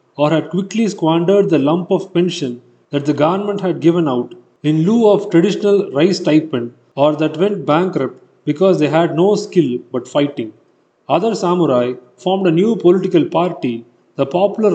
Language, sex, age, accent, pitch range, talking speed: Tamil, male, 30-49, native, 145-190 Hz, 165 wpm